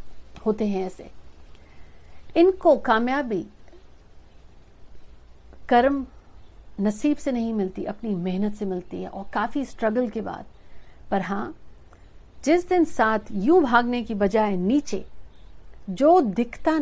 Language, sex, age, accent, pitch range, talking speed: Hindi, female, 60-79, native, 190-240 Hz, 115 wpm